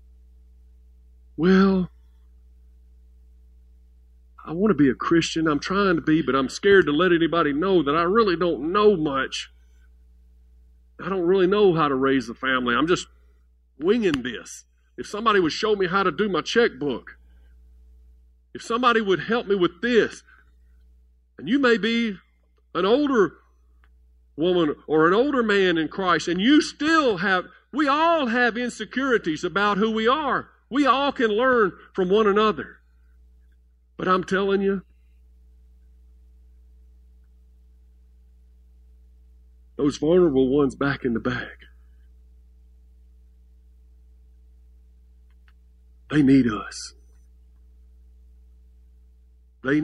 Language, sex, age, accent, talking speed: English, male, 50-69, American, 120 wpm